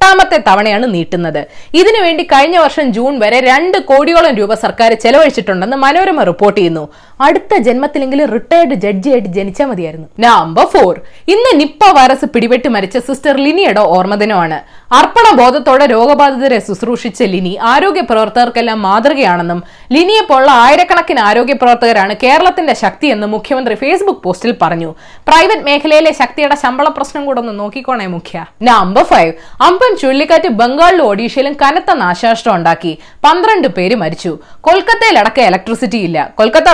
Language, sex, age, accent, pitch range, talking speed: Malayalam, female, 20-39, native, 215-315 Hz, 110 wpm